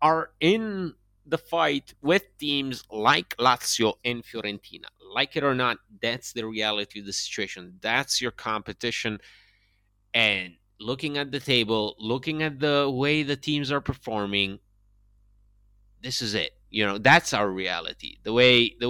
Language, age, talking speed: English, 30-49, 150 wpm